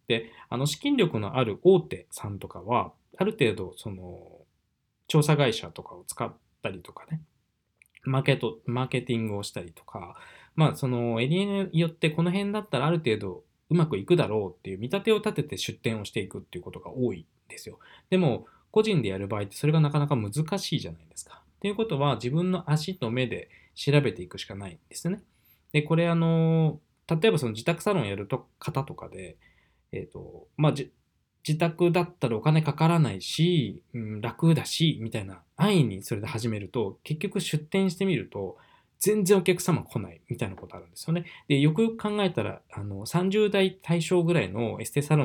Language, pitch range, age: Japanese, 110-175 Hz, 20-39